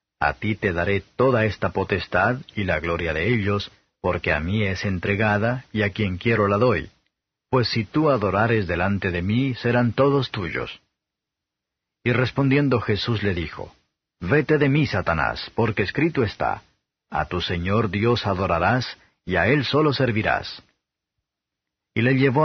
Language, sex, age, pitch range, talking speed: Spanish, male, 50-69, 95-125 Hz, 155 wpm